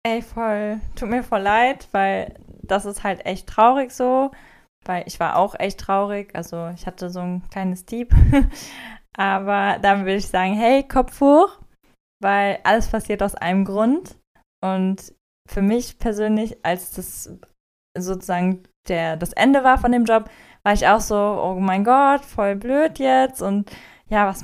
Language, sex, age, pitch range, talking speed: German, female, 20-39, 190-240 Hz, 165 wpm